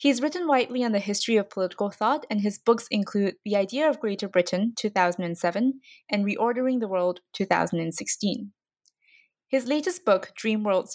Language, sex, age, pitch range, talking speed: English, female, 20-39, 190-245 Hz, 160 wpm